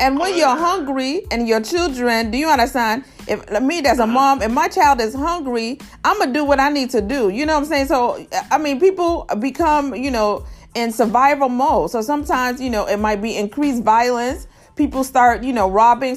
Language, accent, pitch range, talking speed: English, American, 205-275 Hz, 215 wpm